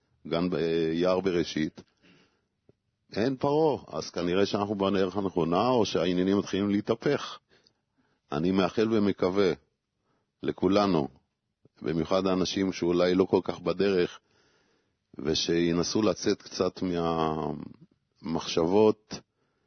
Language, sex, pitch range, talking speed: Hebrew, male, 85-110 Hz, 90 wpm